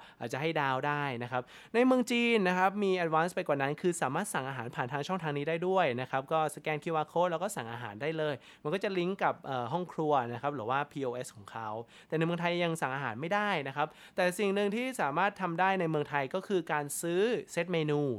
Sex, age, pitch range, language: male, 20-39, 135-190 Hz, Thai